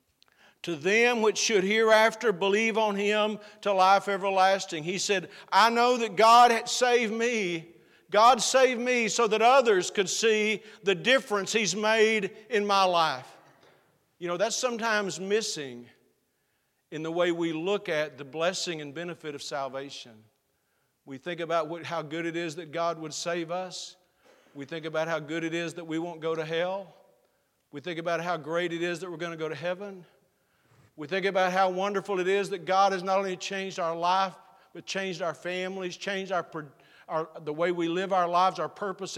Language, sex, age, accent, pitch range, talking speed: English, male, 50-69, American, 165-215 Hz, 185 wpm